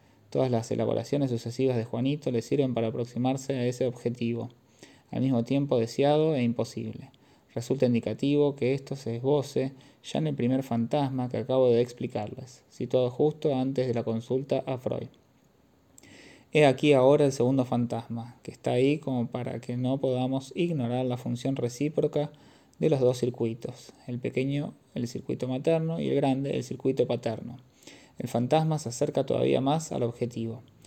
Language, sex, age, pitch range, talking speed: Spanish, male, 20-39, 120-140 Hz, 160 wpm